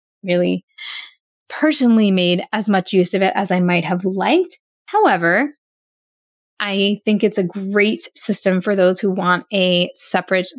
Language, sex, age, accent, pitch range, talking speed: English, female, 10-29, American, 185-235 Hz, 145 wpm